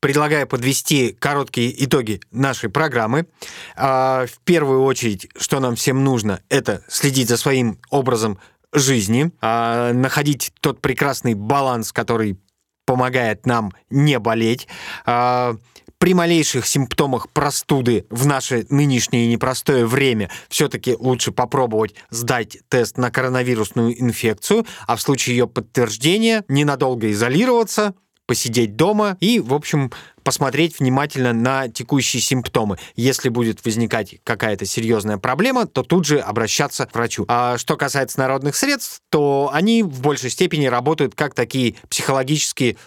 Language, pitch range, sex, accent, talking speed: Russian, 115-145 Hz, male, native, 125 wpm